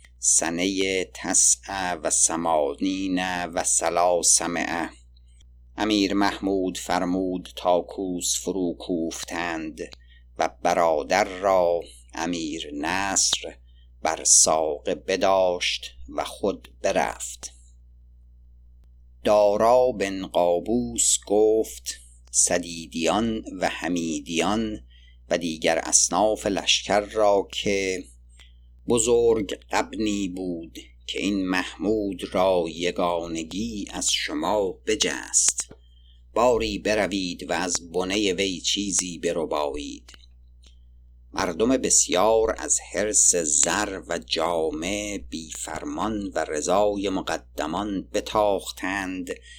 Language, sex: Persian, male